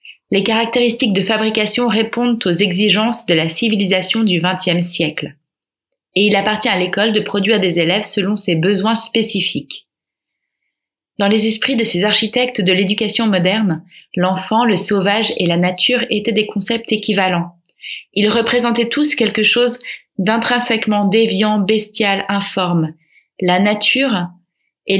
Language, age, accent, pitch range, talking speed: French, 20-39, French, 195-230 Hz, 135 wpm